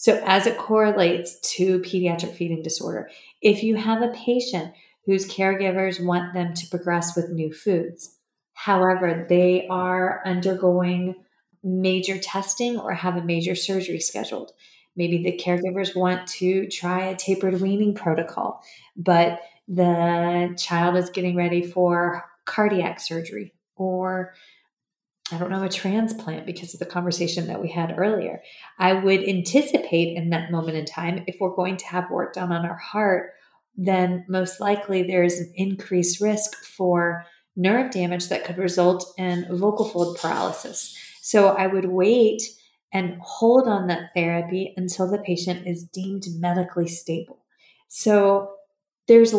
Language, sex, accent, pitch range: English, female, American, 175-195 Hz